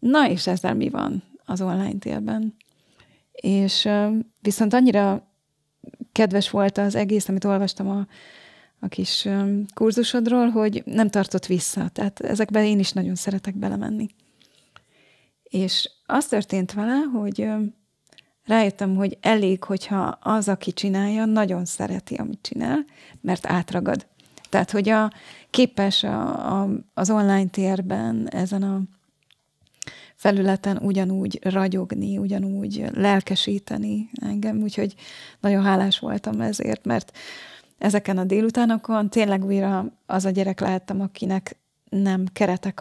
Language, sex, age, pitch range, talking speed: Hungarian, female, 30-49, 195-215 Hz, 120 wpm